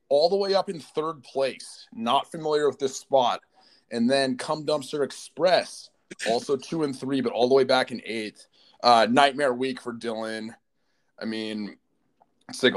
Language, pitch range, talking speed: English, 105-150 Hz, 175 wpm